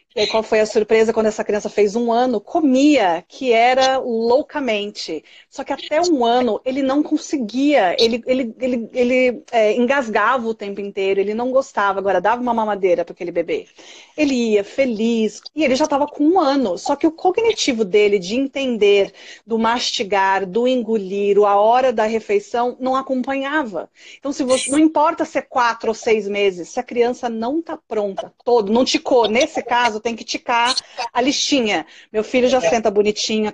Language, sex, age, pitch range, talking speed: Portuguese, female, 40-59, 215-275 Hz, 185 wpm